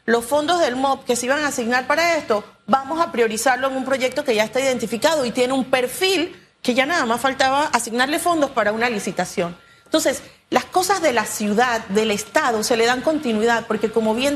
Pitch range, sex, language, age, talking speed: 235-310 Hz, female, Spanish, 40-59, 210 wpm